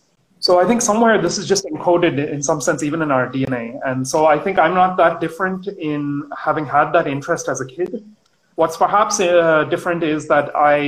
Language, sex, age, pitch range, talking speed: Hindi, male, 30-49, 135-175 Hz, 210 wpm